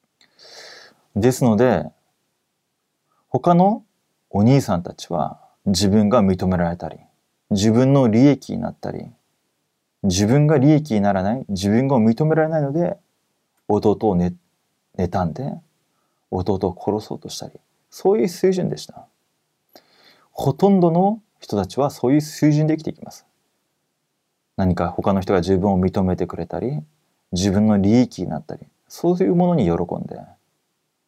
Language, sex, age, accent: Korean, male, 30-49, Japanese